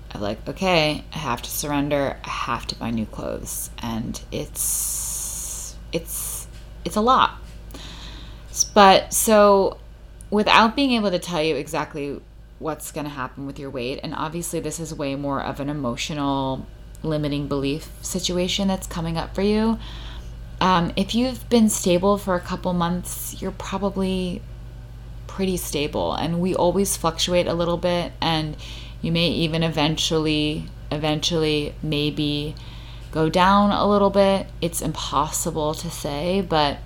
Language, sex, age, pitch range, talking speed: English, female, 20-39, 125-175 Hz, 145 wpm